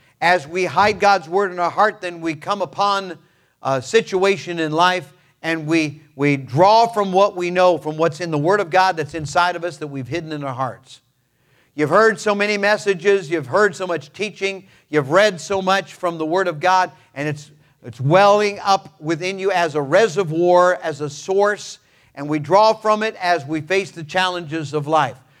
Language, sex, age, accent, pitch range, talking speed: English, male, 50-69, American, 150-195 Hz, 200 wpm